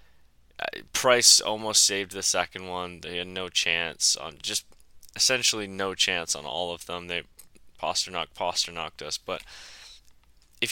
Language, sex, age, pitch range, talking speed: English, male, 10-29, 90-115 Hz, 140 wpm